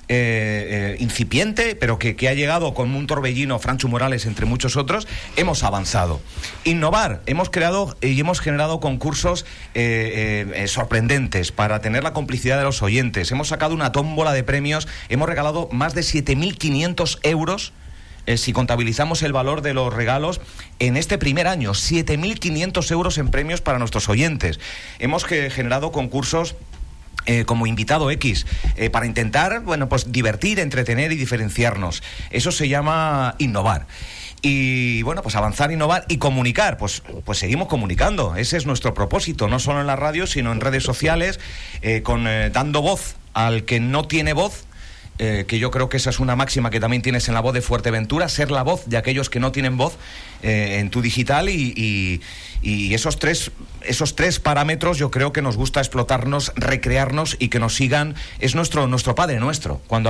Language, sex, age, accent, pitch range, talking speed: Spanish, male, 40-59, Spanish, 115-150 Hz, 175 wpm